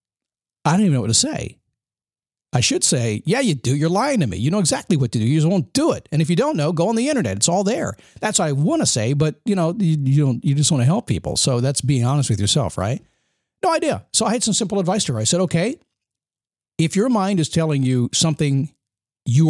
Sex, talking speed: male, 265 wpm